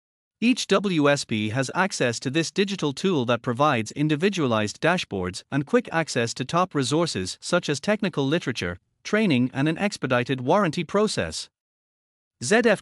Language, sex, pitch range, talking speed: English, male, 125-170 Hz, 135 wpm